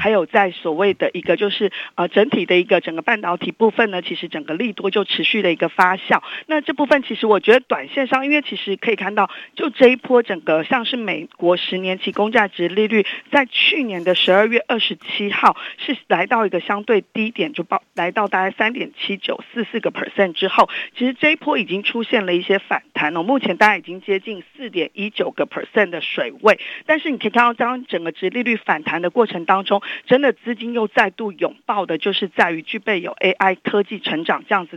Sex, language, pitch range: female, Chinese, 180-240 Hz